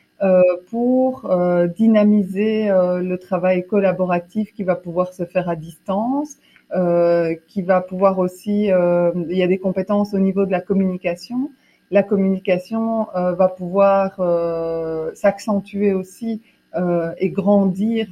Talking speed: 115 wpm